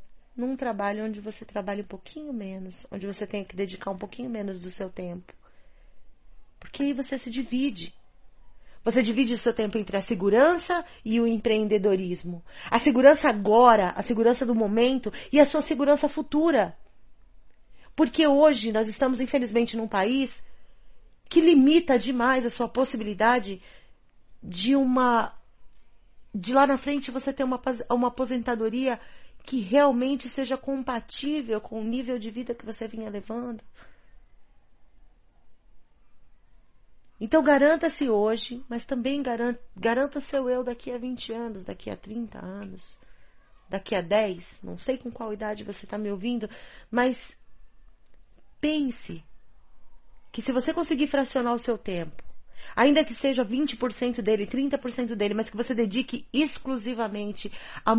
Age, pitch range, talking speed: 30-49, 215-270 Hz, 140 wpm